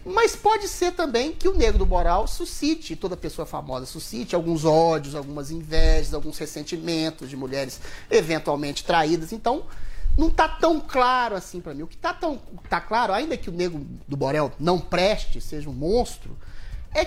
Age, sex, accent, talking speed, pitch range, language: 30-49, male, Brazilian, 175 wpm, 165-255 Hz, Portuguese